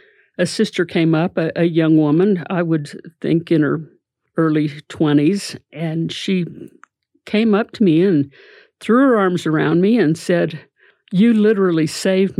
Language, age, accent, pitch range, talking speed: English, 50-69, American, 155-185 Hz, 155 wpm